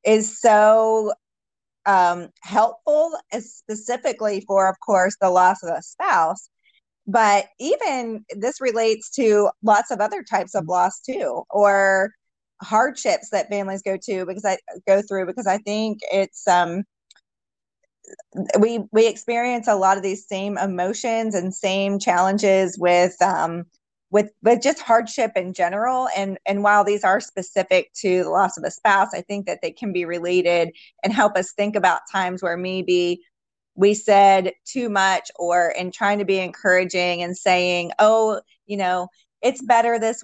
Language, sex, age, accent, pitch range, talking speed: English, female, 30-49, American, 185-220 Hz, 155 wpm